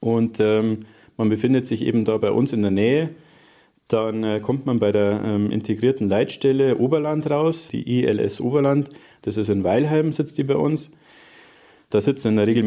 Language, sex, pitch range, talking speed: German, male, 105-135 Hz, 185 wpm